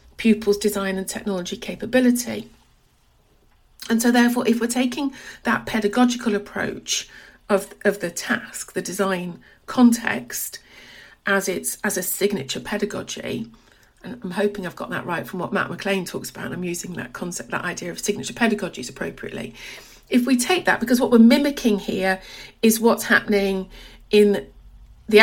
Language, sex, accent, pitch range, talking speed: English, female, British, 195-240 Hz, 155 wpm